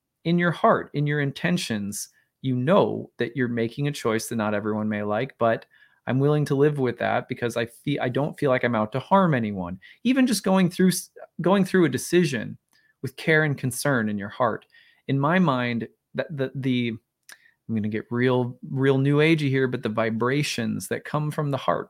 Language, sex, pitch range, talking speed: English, male, 120-160 Hz, 205 wpm